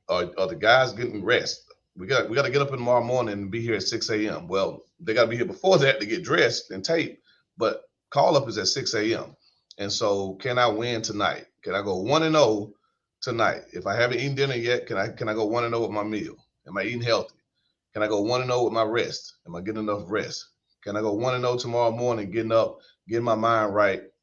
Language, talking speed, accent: English, 235 wpm, American